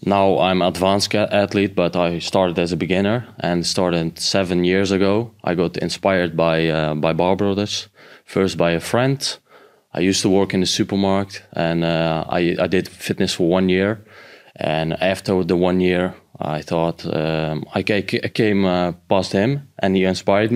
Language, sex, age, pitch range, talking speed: English, male, 20-39, 85-100 Hz, 170 wpm